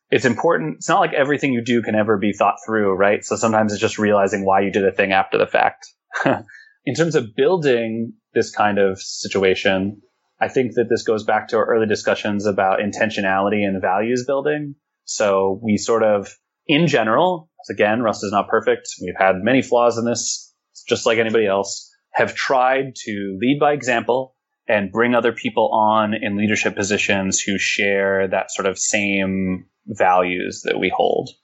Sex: male